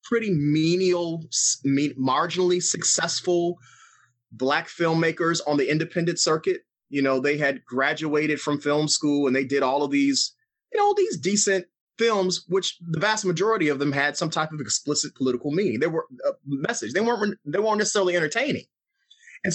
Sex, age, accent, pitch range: male, 30-49, American, 145-205 Hz